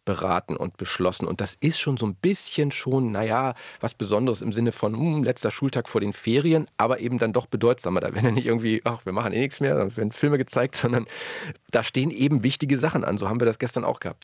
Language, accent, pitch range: German, German, 105-130 Hz